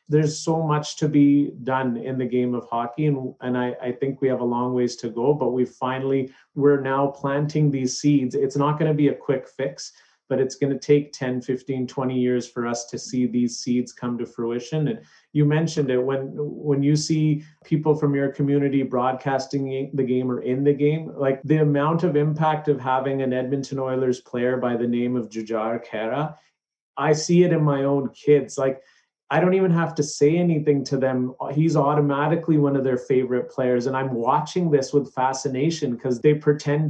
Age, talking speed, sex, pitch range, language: 30-49, 205 wpm, male, 125-145 Hz, English